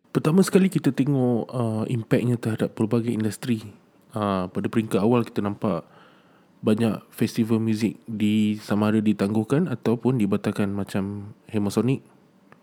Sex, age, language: male, 20-39, Malay